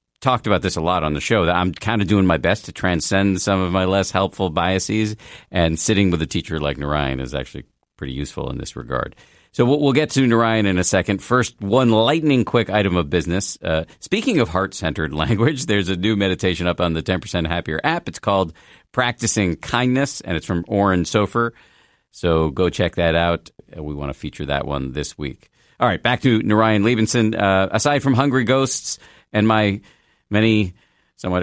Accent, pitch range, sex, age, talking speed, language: American, 85-110 Hz, male, 50-69, 200 wpm, English